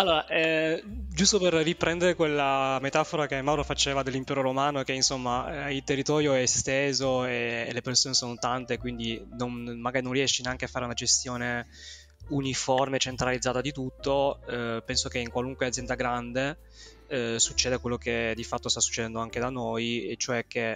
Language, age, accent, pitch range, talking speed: Italian, 20-39, native, 115-135 Hz, 165 wpm